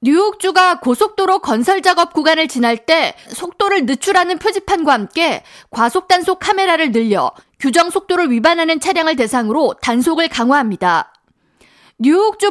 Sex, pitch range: female, 265-360 Hz